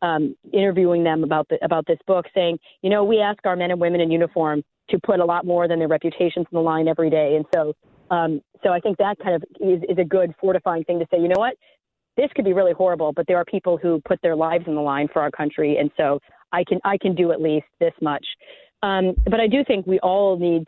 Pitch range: 170-210 Hz